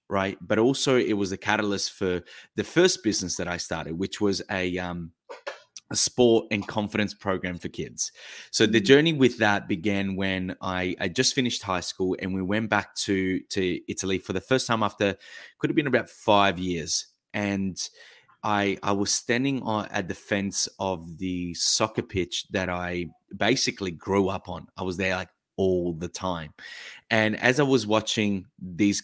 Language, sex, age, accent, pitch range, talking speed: English, male, 20-39, Australian, 95-115 Hz, 180 wpm